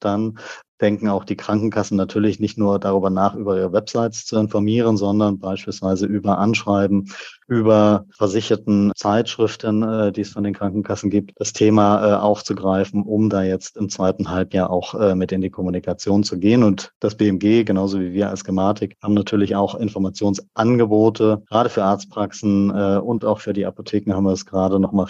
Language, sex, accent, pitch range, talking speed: German, male, German, 95-105 Hz, 165 wpm